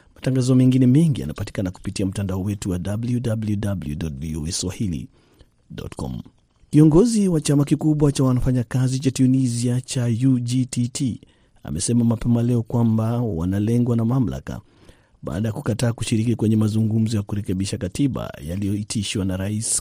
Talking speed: 120 wpm